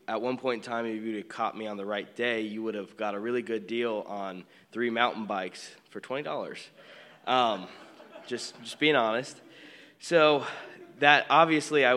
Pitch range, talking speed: 105-120 Hz, 185 wpm